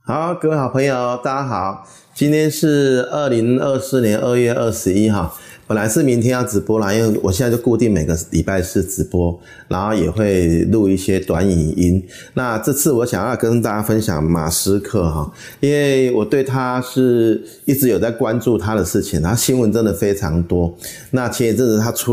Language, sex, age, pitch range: Chinese, male, 30-49, 90-125 Hz